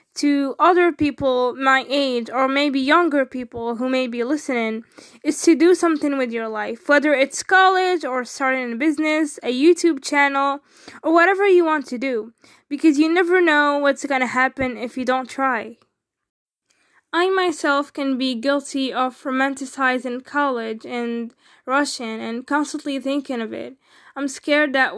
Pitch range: 245-290 Hz